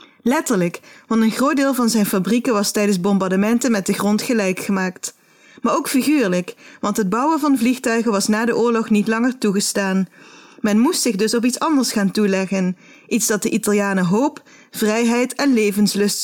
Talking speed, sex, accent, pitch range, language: 175 wpm, female, Dutch, 205-255 Hz, Dutch